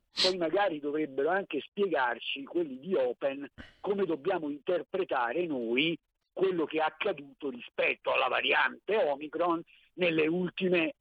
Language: Italian